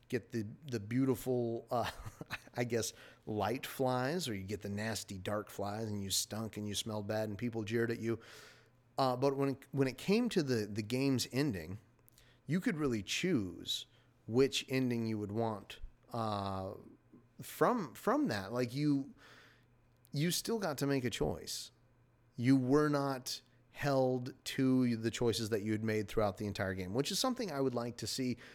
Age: 30-49